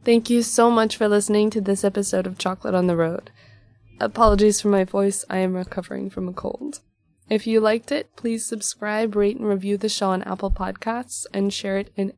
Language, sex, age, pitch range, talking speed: English, female, 20-39, 185-210 Hz, 205 wpm